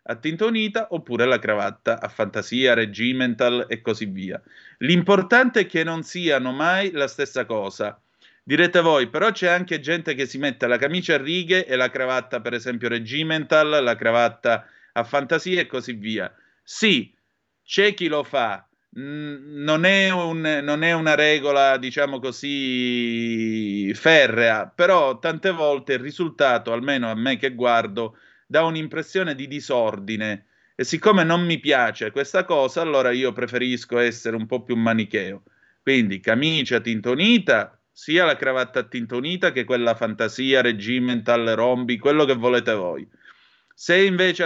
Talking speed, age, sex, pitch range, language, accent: 145 wpm, 30-49, male, 120-165 Hz, Italian, native